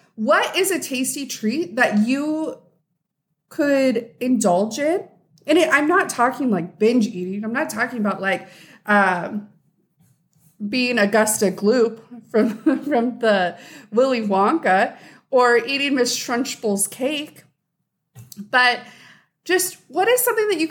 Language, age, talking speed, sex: English, 30-49, 125 wpm, female